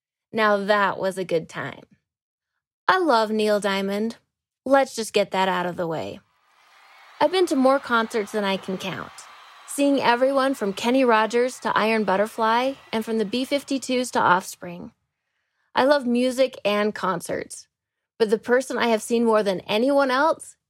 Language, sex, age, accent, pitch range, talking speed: English, female, 20-39, American, 195-255 Hz, 160 wpm